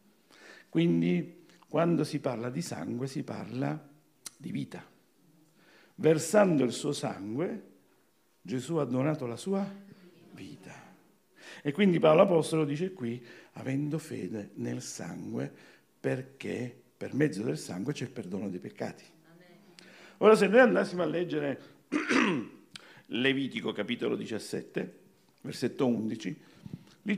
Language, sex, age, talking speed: Italian, male, 50-69, 115 wpm